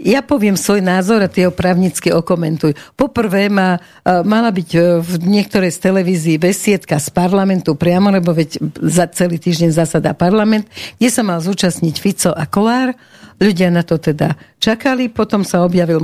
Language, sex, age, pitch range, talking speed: Slovak, female, 60-79, 165-195 Hz, 155 wpm